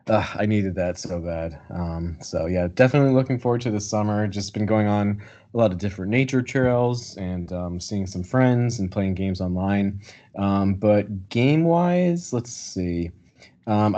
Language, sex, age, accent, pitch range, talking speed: English, male, 20-39, American, 95-115 Hz, 170 wpm